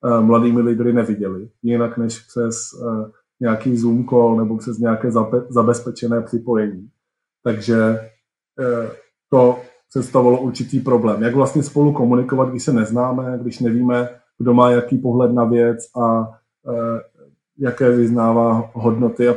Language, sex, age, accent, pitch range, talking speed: Czech, male, 20-39, native, 120-130 Hz, 120 wpm